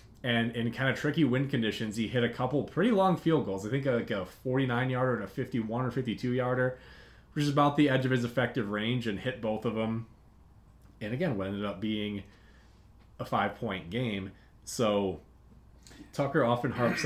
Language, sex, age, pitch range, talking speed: English, male, 30-49, 105-130 Hz, 185 wpm